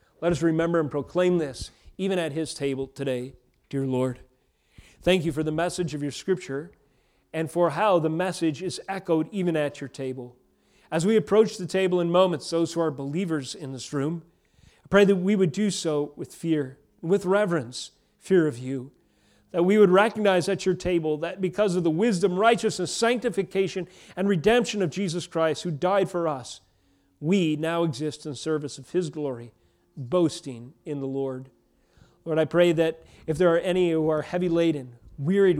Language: English